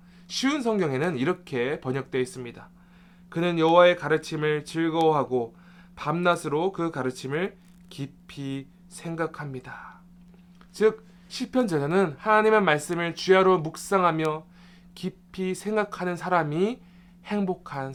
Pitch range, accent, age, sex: 155-185 Hz, native, 20-39, male